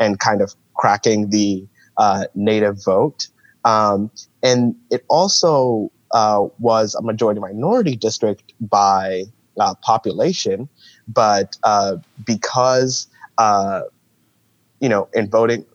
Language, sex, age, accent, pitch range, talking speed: English, male, 20-39, American, 100-115 Hz, 110 wpm